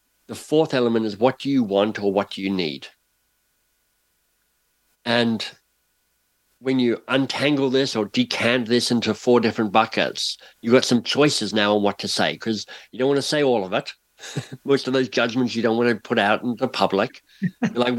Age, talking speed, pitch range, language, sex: 60-79, 190 wpm, 110-130 Hz, English, male